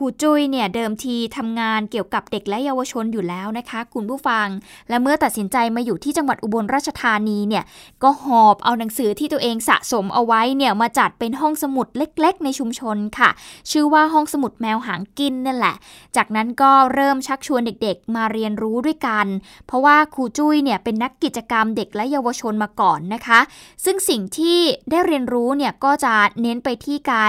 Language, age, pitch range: Thai, 20-39, 220-275 Hz